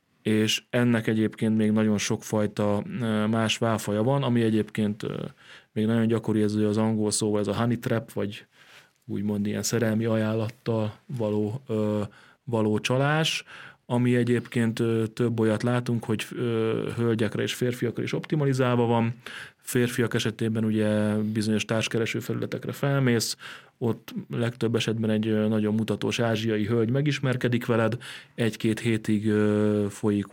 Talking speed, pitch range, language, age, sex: 125 wpm, 105-120 Hz, Hungarian, 30-49, male